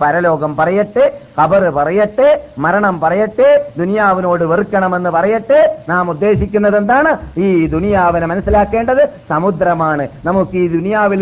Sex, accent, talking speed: male, native, 100 wpm